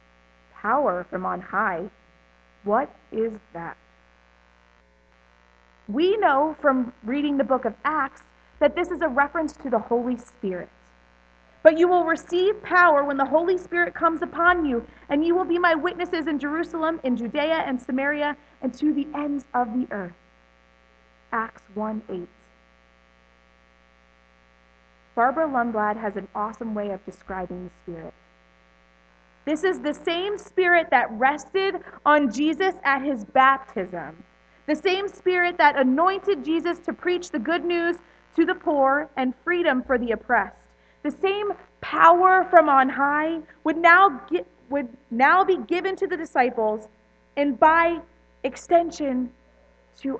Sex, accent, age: female, American, 30-49